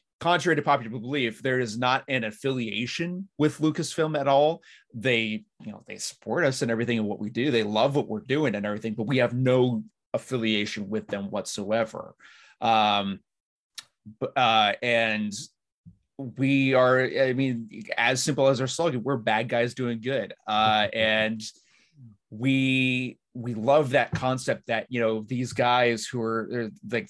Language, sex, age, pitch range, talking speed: English, male, 30-49, 115-145 Hz, 160 wpm